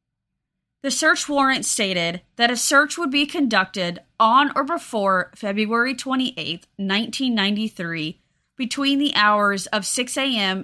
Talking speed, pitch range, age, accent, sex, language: 125 wpm, 190-255 Hz, 30-49, American, female, English